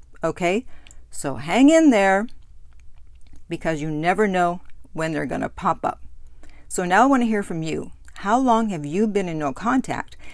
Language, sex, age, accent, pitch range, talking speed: English, female, 50-69, American, 155-225 Hz, 180 wpm